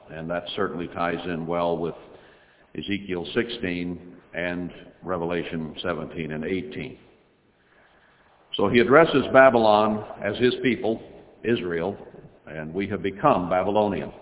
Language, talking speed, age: English, 115 wpm, 60-79